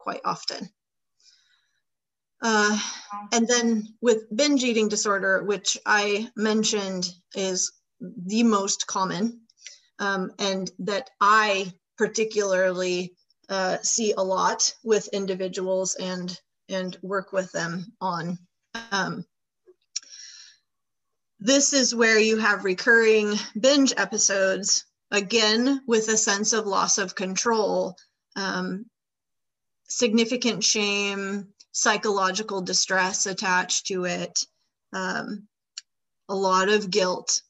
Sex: female